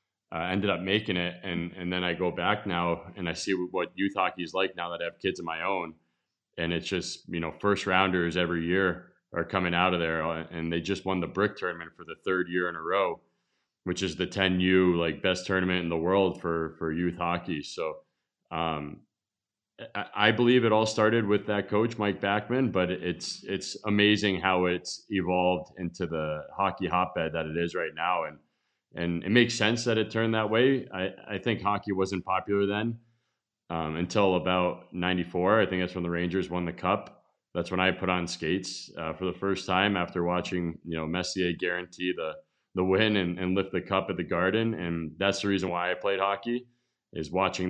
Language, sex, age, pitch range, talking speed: English, male, 20-39, 85-100 Hz, 210 wpm